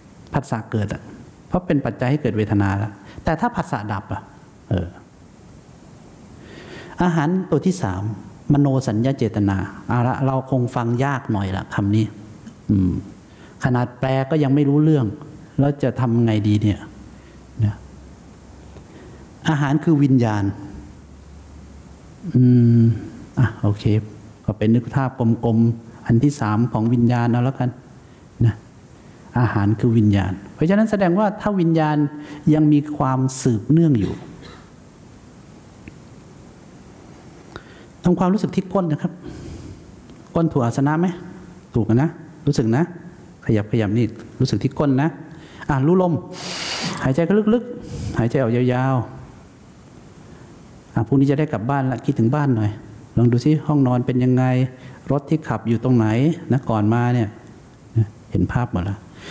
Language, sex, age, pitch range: English, male, 60-79, 105-145 Hz